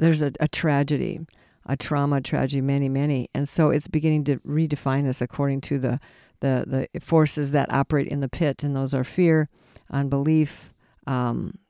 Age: 60-79